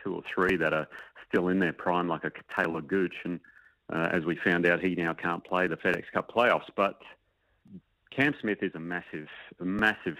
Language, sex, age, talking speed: English, male, 40-59, 200 wpm